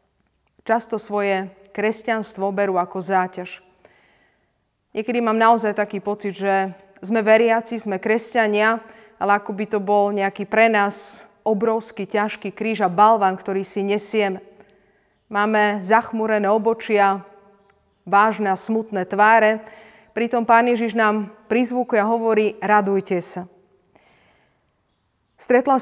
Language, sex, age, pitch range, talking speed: Slovak, female, 30-49, 200-225 Hz, 115 wpm